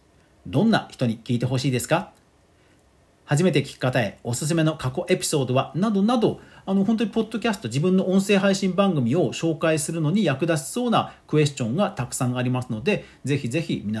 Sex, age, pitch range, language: male, 40-59, 120-185 Hz, Japanese